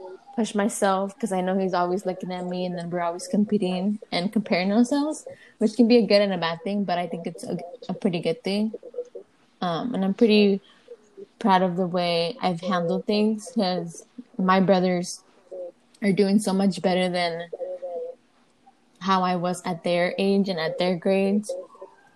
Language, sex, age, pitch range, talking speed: English, female, 20-39, 185-220 Hz, 175 wpm